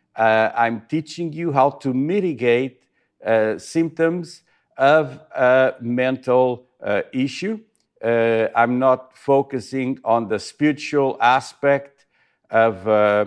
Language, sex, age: English, male, 50-69